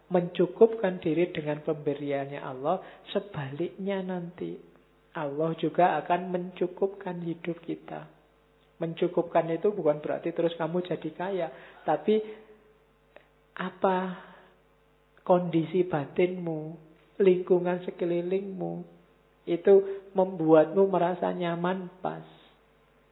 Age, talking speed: 50-69, 85 wpm